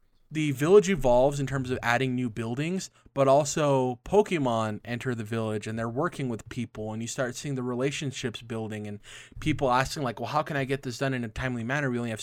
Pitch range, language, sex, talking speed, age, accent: 115-135 Hz, English, male, 220 wpm, 20-39, American